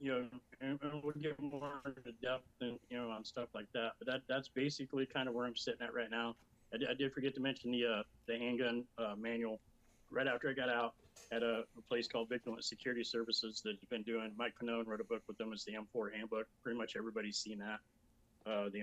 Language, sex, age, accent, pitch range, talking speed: English, male, 30-49, American, 110-125 Hz, 235 wpm